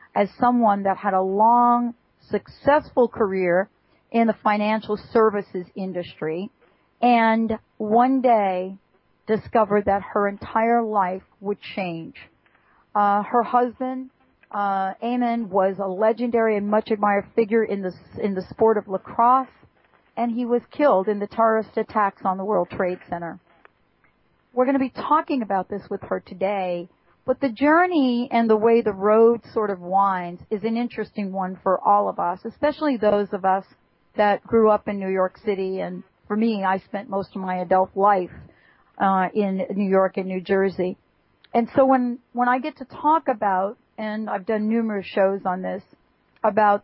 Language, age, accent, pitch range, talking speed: English, 40-59, American, 190-230 Hz, 165 wpm